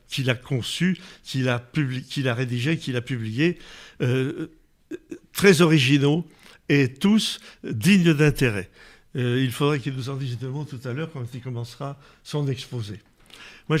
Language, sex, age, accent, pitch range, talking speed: French, male, 60-79, French, 125-170 Hz, 160 wpm